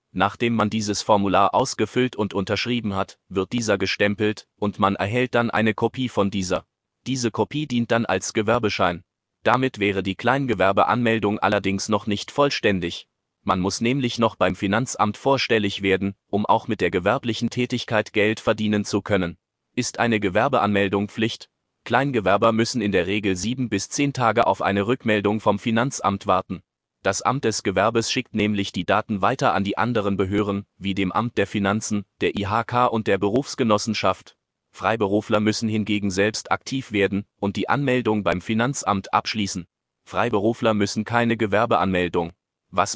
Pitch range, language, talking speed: 100-115 Hz, German, 155 wpm